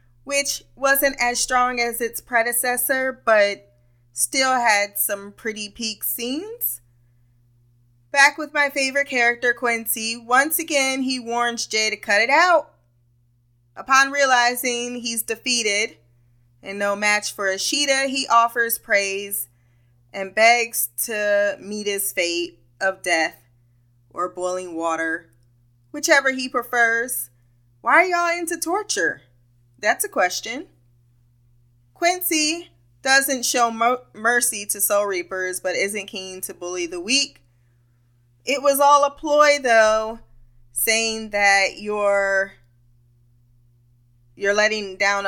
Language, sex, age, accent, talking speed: English, female, 20-39, American, 120 wpm